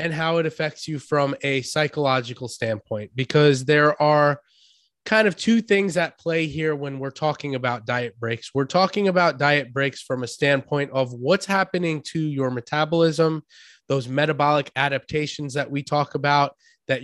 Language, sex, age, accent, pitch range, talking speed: English, male, 20-39, American, 140-165 Hz, 165 wpm